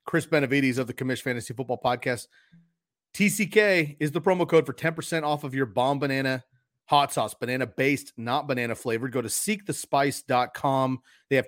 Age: 30-49